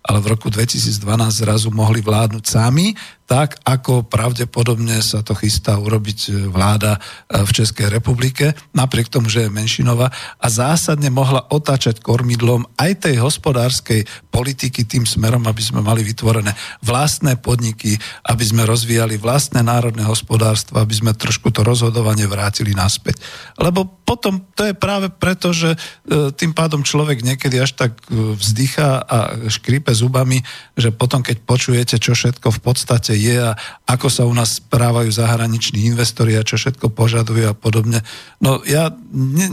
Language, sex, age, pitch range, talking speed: Slovak, male, 50-69, 110-135 Hz, 145 wpm